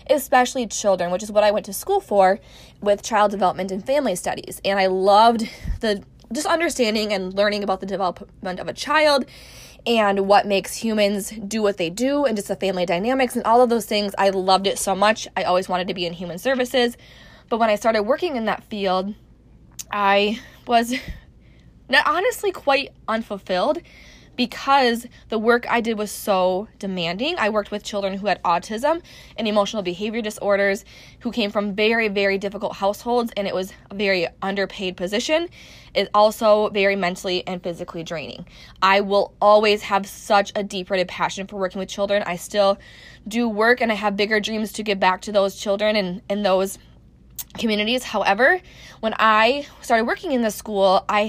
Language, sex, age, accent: English, female, 20-39, American